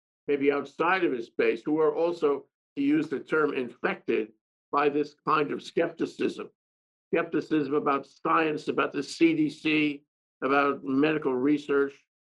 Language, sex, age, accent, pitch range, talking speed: English, male, 50-69, American, 125-170 Hz, 130 wpm